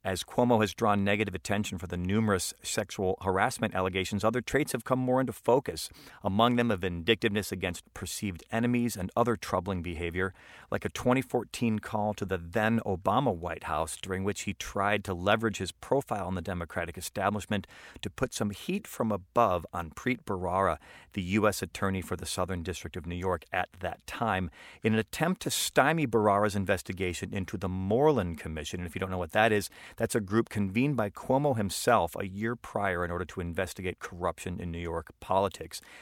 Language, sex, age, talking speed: English, male, 40-59, 185 wpm